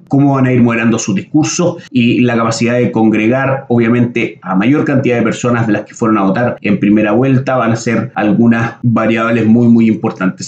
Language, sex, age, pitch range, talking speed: Spanish, male, 30-49, 115-135 Hz, 200 wpm